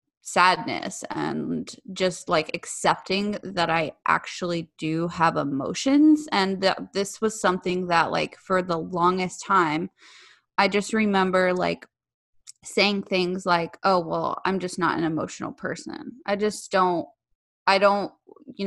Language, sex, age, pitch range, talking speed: English, female, 20-39, 170-205 Hz, 135 wpm